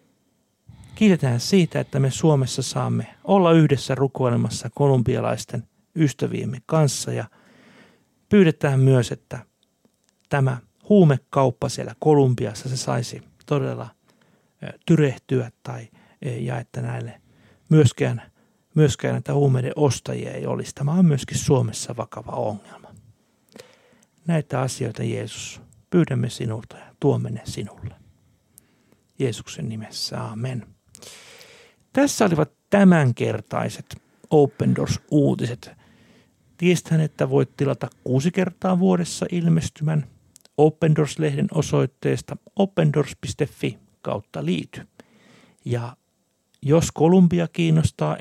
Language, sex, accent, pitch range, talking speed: Finnish, male, native, 125-165 Hz, 95 wpm